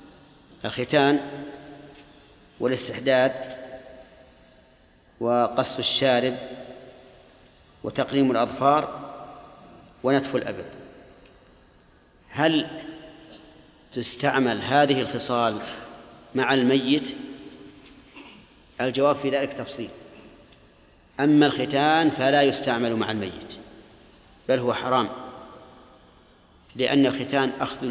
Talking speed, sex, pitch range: 65 wpm, male, 125-145 Hz